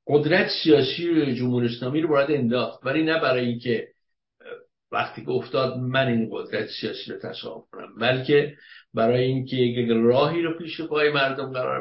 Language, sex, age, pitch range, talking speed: English, male, 60-79, 115-160 Hz, 165 wpm